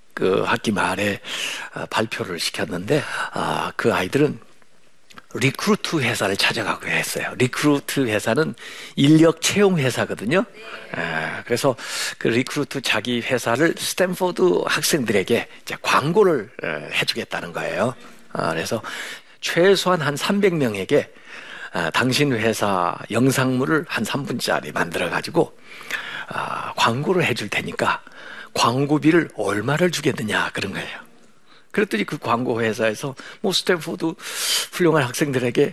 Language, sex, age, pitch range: Korean, male, 50-69, 115-170 Hz